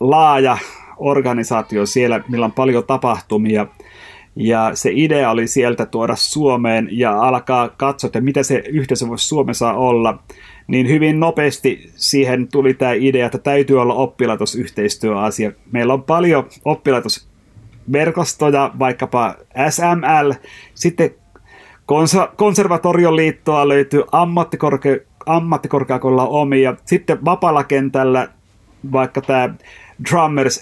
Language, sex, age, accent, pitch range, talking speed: Finnish, male, 30-49, native, 115-140 Hz, 105 wpm